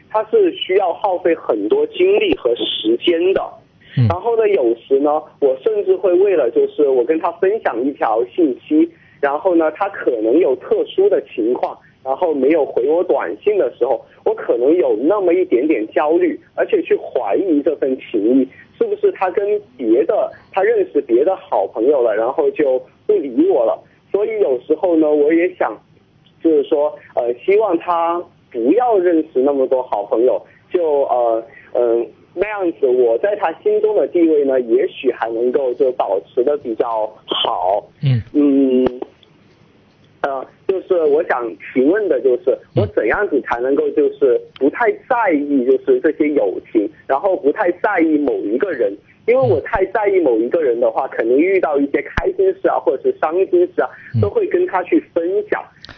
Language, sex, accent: Chinese, male, native